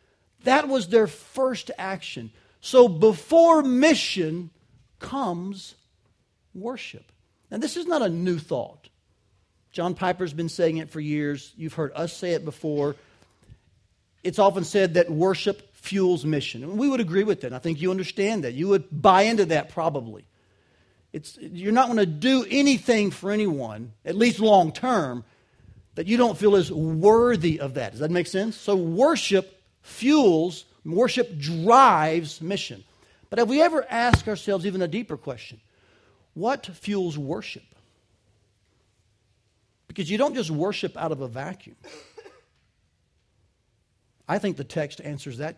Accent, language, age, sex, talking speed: American, English, 40-59, male, 145 wpm